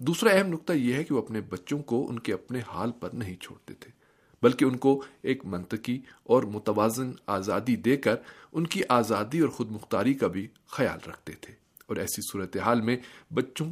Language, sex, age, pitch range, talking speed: Urdu, male, 40-59, 105-135 Hz, 195 wpm